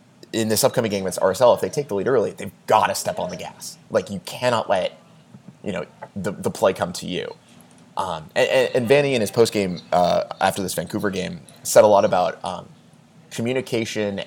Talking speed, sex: 215 wpm, male